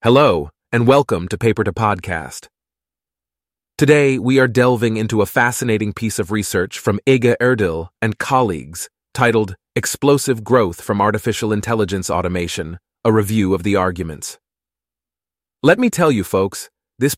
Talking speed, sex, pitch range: 140 wpm, male, 90-120 Hz